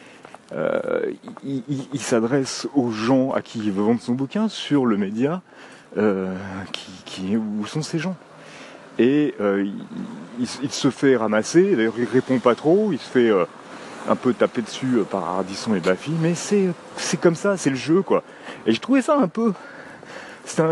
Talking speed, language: 190 wpm, French